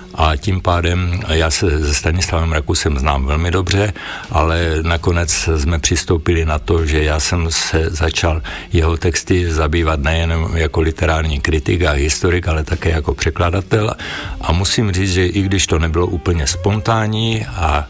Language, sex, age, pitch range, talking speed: Slovak, male, 60-79, 80-95 Hz, 150 wpm